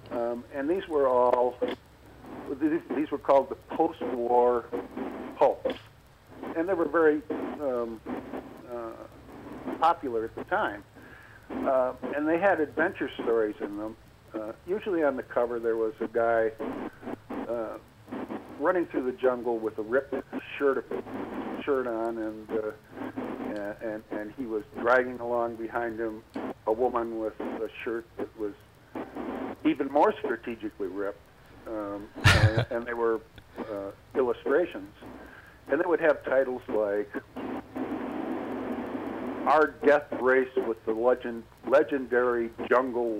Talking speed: 125 wpm